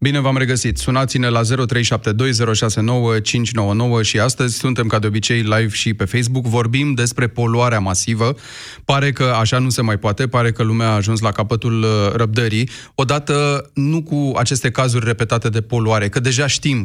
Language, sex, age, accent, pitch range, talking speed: Romanian, male, 30-49, native, 110-135 Hz, 165 wpm